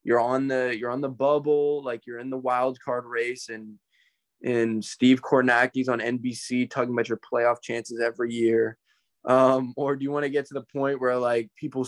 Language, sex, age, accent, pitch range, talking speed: English, male, 20-39, American, 120-140 Hz, 200 wpm